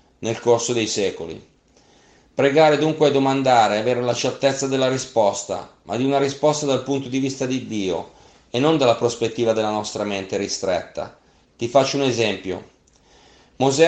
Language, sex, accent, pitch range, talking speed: Italian, male, native, 115-140 Hz, 160 wpm